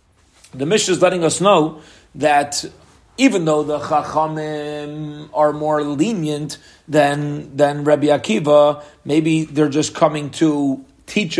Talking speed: 125 wpm